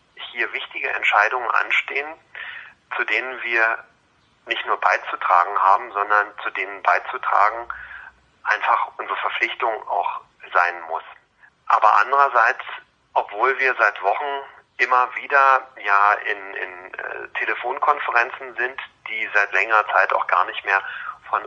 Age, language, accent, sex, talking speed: 40-59, German, German, male, 125 wpm